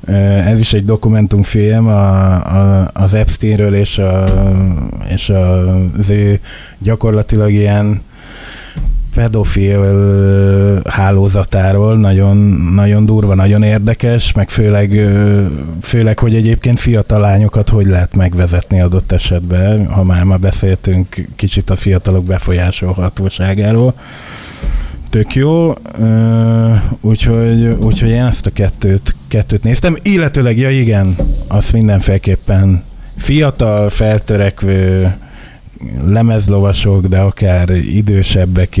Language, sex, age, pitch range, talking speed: Hungarian, male, 20-39, 90-105 Hz, 90 wpm